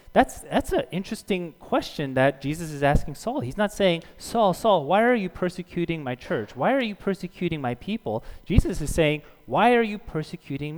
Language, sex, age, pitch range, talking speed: English, male, 30-49, 125-175 Hz, 190 wpm